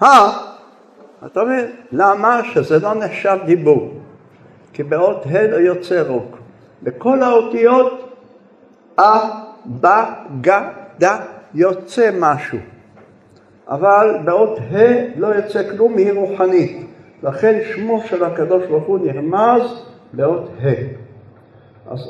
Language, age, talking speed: Hebrew, 60-79, 100 wpm